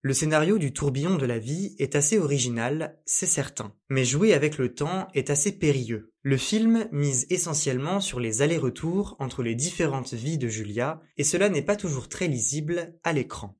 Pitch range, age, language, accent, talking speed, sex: 125-165 Hz, 20-39, French, French, 185 wpm, male